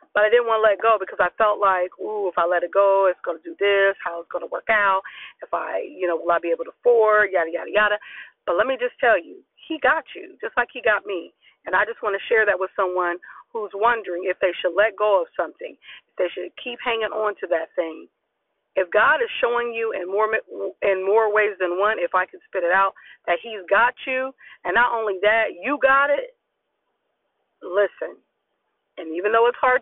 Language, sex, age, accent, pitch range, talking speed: English, female, 40-59, American, 190-250 Hz, 235 wpm